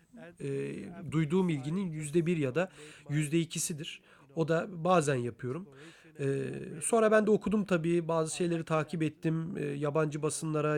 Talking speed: 135 wpm